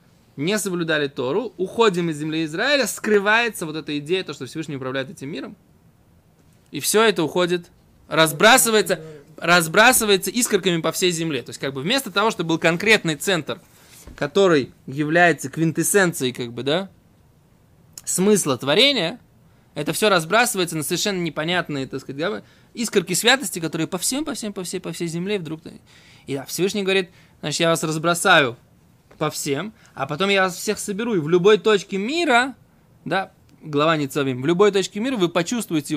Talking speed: 160 wpm